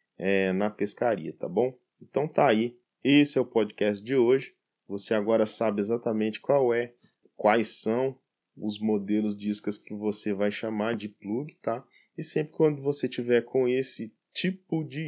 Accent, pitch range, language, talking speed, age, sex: Brazilian, 105-135 Hz, Portuguese, 165 wpm, 20-39, male